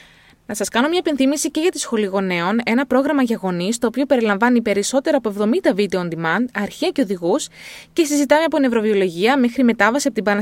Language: Greek